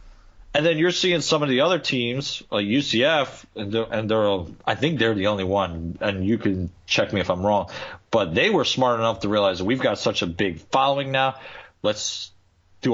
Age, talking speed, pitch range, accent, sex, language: 40-59, 210 wpm, 90-120 Hz, American, male, English